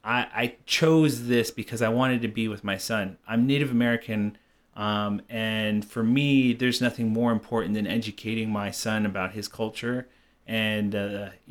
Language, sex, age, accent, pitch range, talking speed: English, male, 30-49, American, 105-120 Hz, 165 wpm